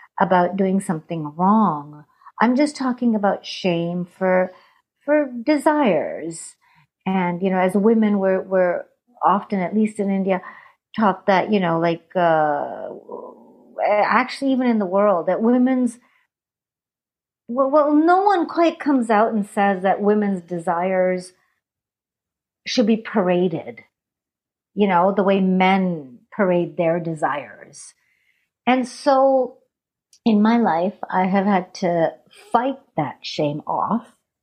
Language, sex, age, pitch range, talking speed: English, female, 50-69, 175-225 Hz, 125 wpm